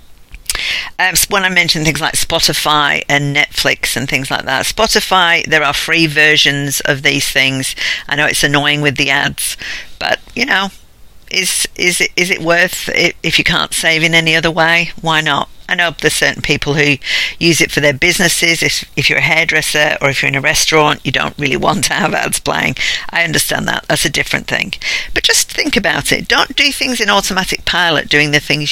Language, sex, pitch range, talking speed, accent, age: English, female, 145-180 Hz, 205 wpm, British, 50-69